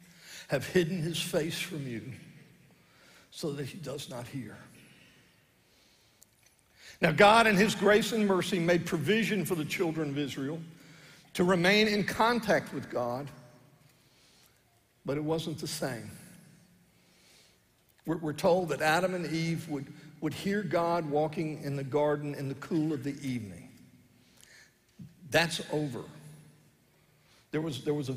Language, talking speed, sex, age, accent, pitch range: English, 135 wpm, male, 60-79, American, 140-185 Hz